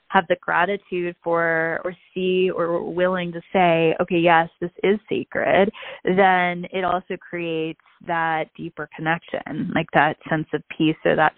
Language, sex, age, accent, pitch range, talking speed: English, female, 20-39, American, 155-180 Hz, 155 wpm